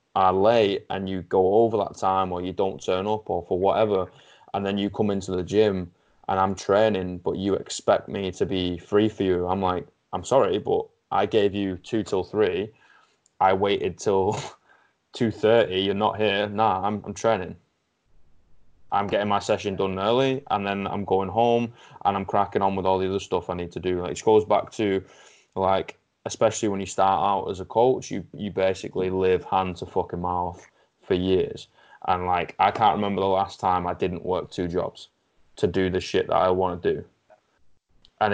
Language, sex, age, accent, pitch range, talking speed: English, male, 20-39, British, 95-105 Hz, 200 wpm